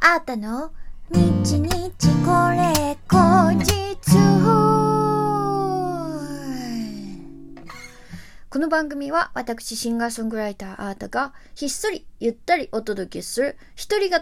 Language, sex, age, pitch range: Japanese, female, 20-39, 205-290 Hz